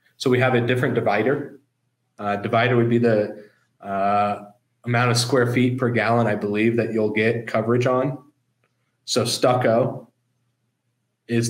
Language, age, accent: English, 30-49, American